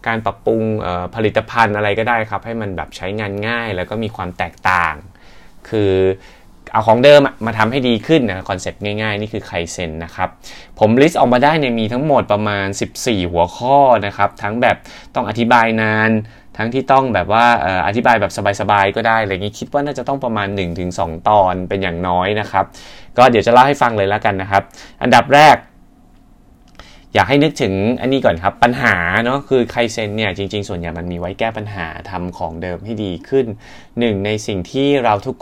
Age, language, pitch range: 20-39, Thai, 95-120 Hz